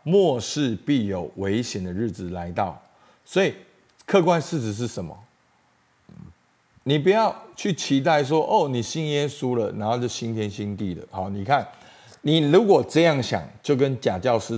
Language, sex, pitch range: Chinese, male, 100-135 Hz